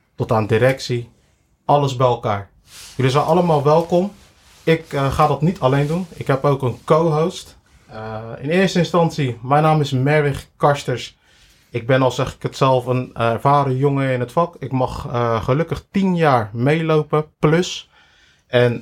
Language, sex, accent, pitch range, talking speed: Dutch, male, Dutch, 120-150 Hz, 165 wpm